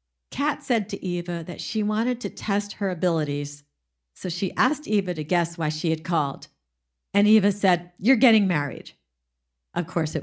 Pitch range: 155-210 Hz